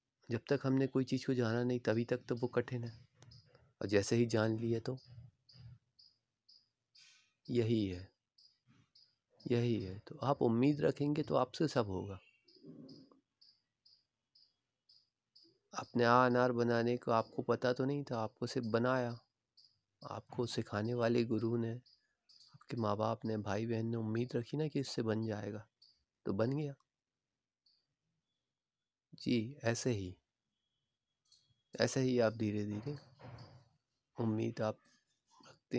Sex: male